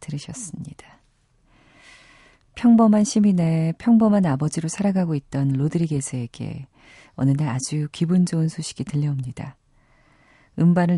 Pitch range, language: 140-180 Hz, Korean